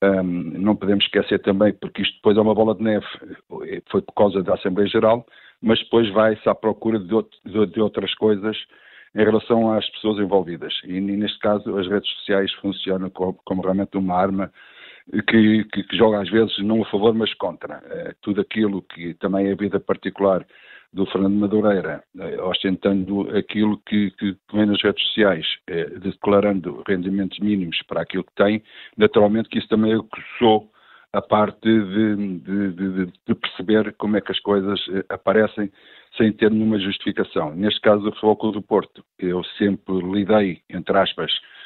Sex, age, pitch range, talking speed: male, 50-69, 95-110 Hz, 175 wpm